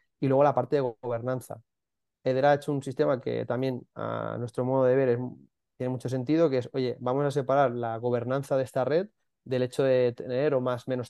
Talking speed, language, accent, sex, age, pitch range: 215 wpm, Spanish, Spanish, male, 20-39, 125-145 Hz